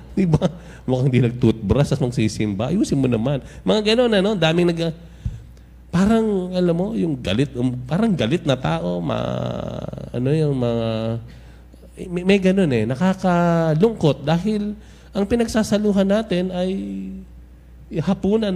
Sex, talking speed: male, 130 wpm